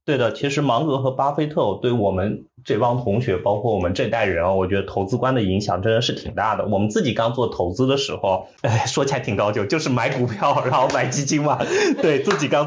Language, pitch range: Chinese, 105-145 Hz